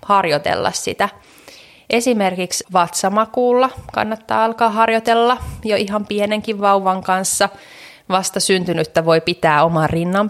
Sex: female